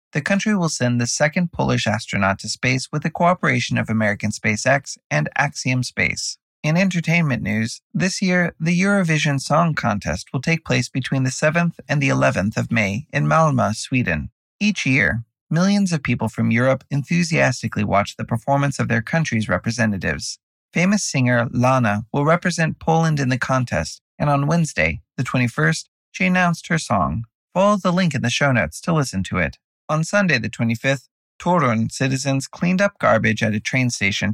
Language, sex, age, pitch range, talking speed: English, male, 30-49, 115-165 Hz, 175 wpm